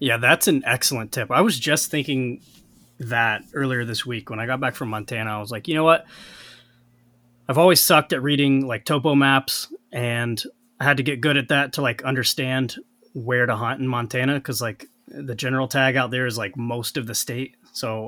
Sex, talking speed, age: male, 210 wpm, 20-39